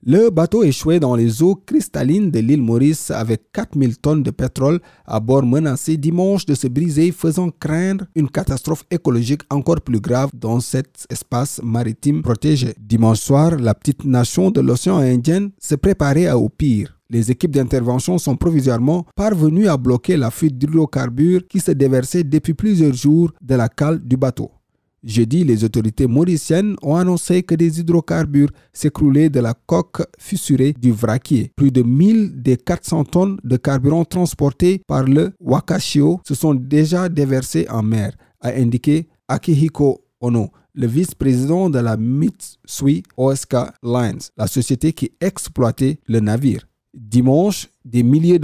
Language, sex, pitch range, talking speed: French, male, 125-170 Hz, 150 wpm